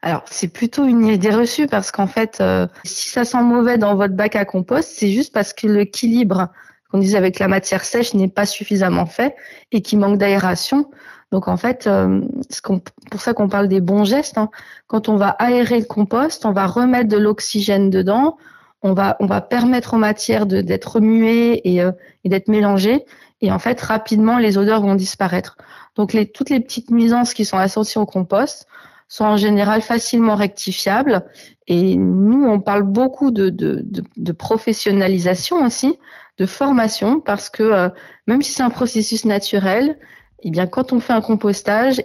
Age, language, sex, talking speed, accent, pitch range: 20-39, French, female, 190 wpm, French, 195-235 Hz